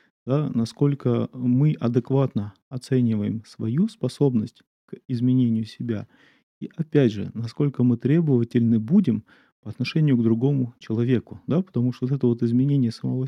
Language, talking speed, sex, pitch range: Russian, 135 wpm, male, 110-135 Hz